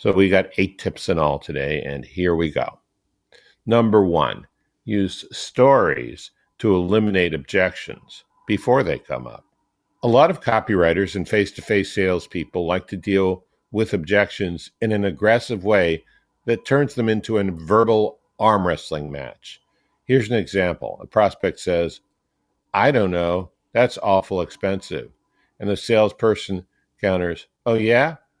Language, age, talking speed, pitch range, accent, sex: English, 50-69, 140 wpm, 85-110 Hz, American, male